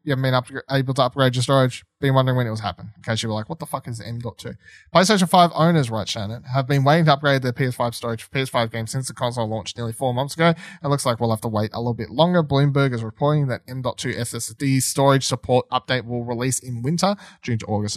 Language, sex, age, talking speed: English, male, 20-39, 255 wpm